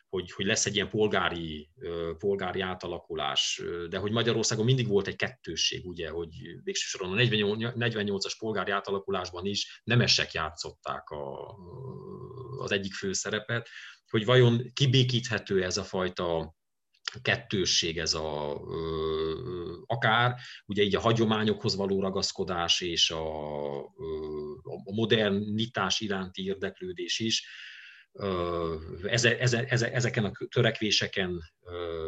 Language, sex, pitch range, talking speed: Hungarian, male, 90-120 Hz, 105 wpm